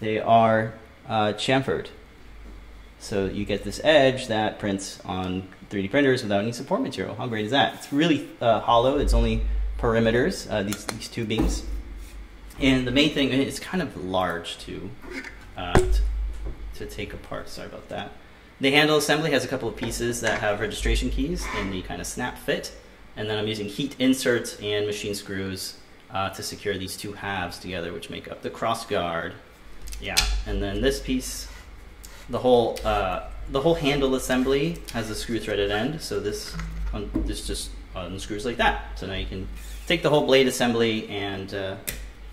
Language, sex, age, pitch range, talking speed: English, male, 30-49, 95-120 Hz, 175 wpm